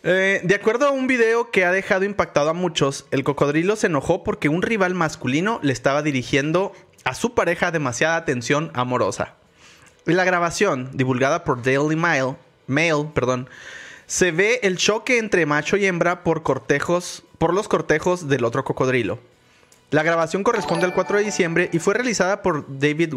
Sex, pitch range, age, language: male, 140-185 Hz, 30-49, Spanish